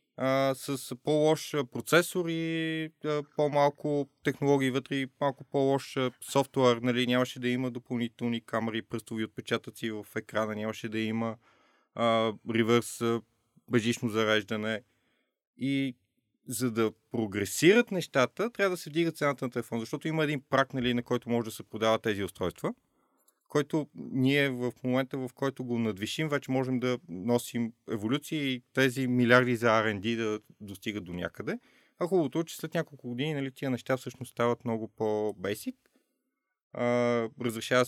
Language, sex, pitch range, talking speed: Bulgarian, male, 115-145 Hz, 145 wpm